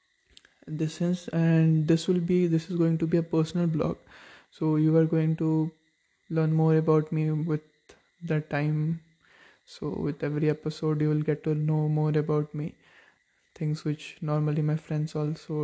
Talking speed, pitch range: 170 wpm, 150-170 Hz